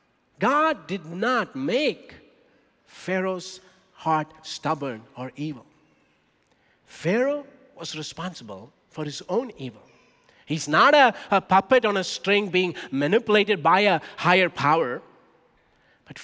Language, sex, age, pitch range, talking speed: English, male, 50-69, 160-245 Hz, 115 wpm